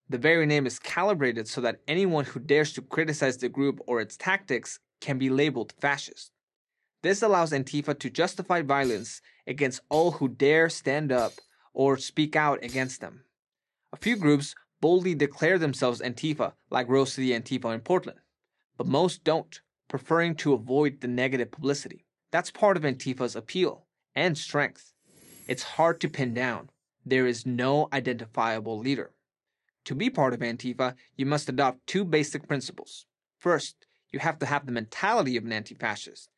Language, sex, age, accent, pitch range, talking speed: English, male, 20-39, American, 125-155 Hz, 160 wpm